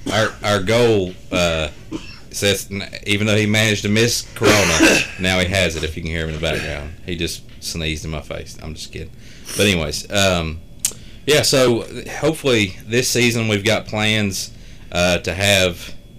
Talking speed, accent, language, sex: 175 wpm, American, English, male